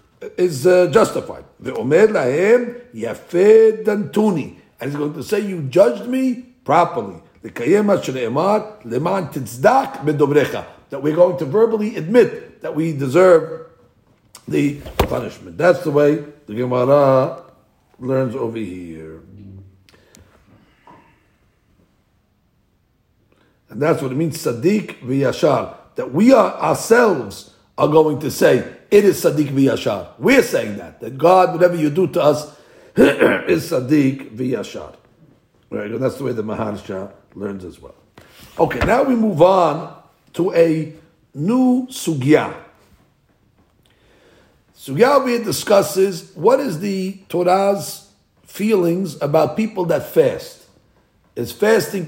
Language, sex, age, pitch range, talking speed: English, male, 60-79, 135-210 Hz, 110 wpm